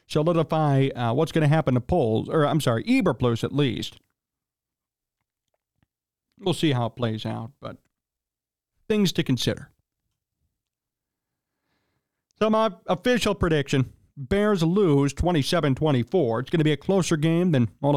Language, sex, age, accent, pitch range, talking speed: English, male, 40-59, American, 125-165 Hz, 135 wpm